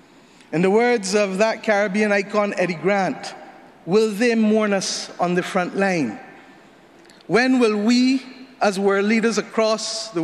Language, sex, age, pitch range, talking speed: English, male, 50-69, 135-200 Hz, 145 wpm